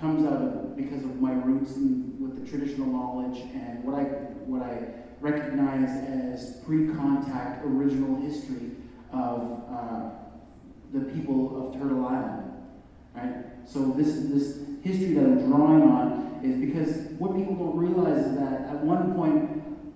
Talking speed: 145 wpm